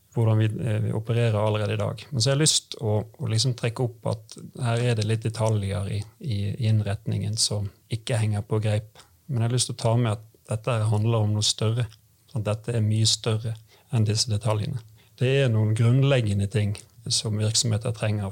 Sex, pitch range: male, 110-125 Hz